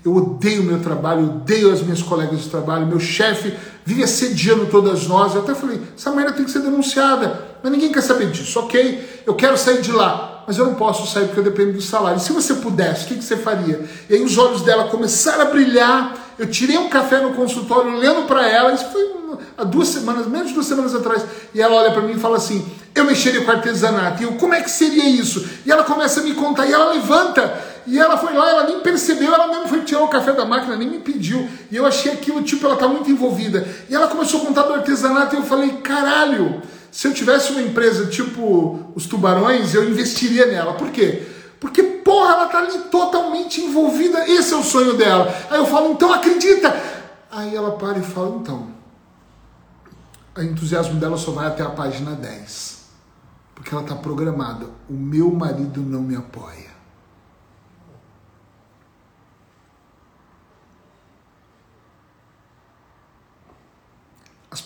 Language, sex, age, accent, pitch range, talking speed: Portuguese, male, 40-59, Brazilian, 170-280 Hz, 185 wpm